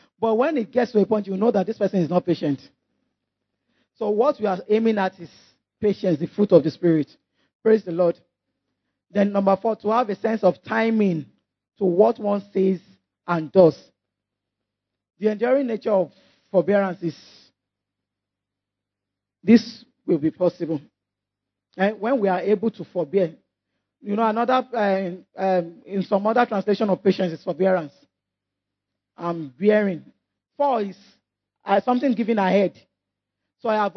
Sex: male